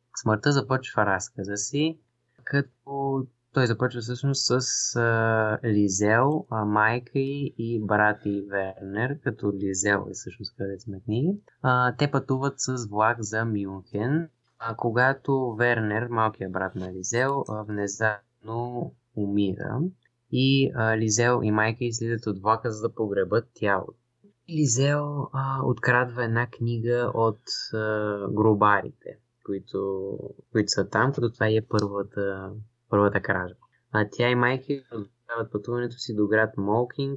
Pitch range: 105-125 Hz